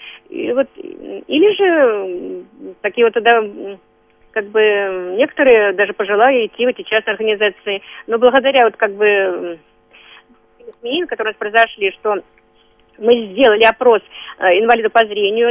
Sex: female